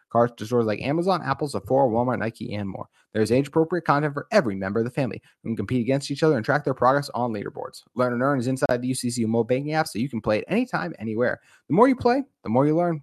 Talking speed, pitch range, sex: 255 wpm, 105-150 Hz, male